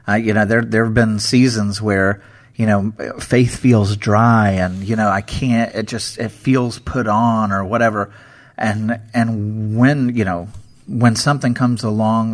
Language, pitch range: English, 100-115 Hz